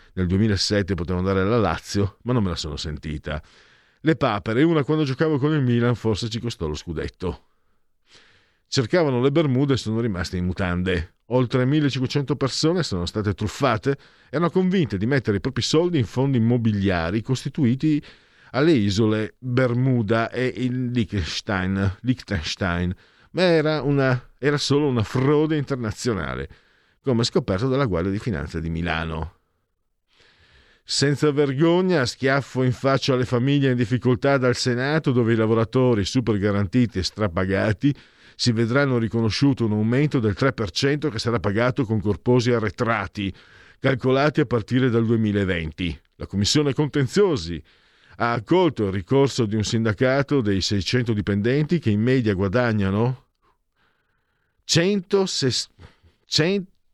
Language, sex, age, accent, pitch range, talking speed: Italian, male, 50-69, native, 100-135 Hz, 135 wpm